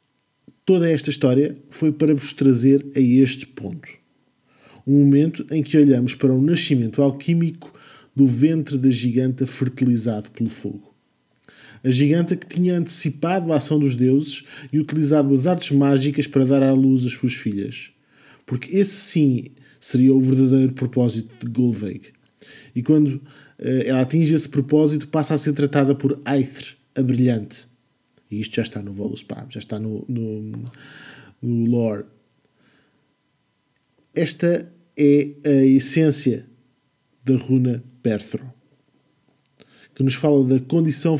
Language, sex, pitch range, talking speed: English, male, 125-150 Hz, 140 wpm